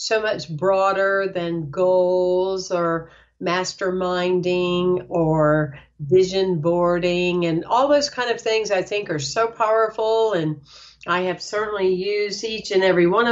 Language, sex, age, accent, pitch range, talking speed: English, female, 50-69, American, 175-210 Hz, 135 wpm